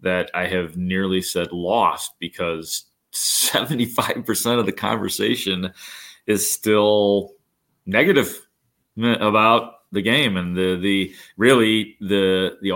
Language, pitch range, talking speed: English, 95-120 Hz, 115 wpm